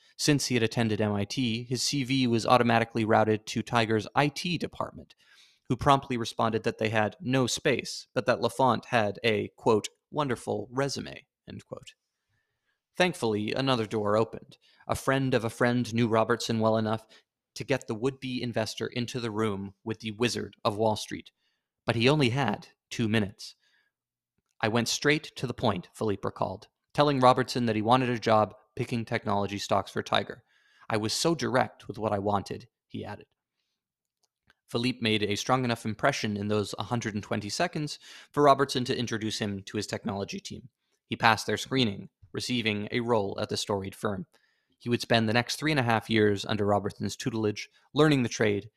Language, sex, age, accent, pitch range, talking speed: English, male, 30-49, American, 105-125 Hz, 175 wpm